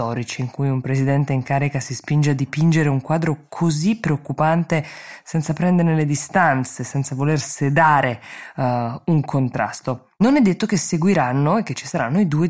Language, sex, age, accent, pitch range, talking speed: Italian, female, 20-39, native, 130-170 Hz, 170 wpm